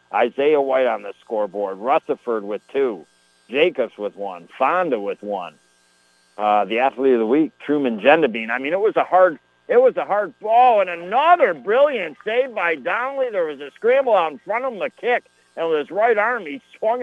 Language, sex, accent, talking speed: English, male, American, 200 wpm